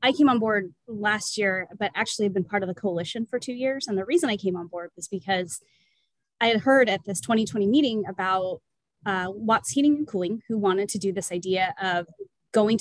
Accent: American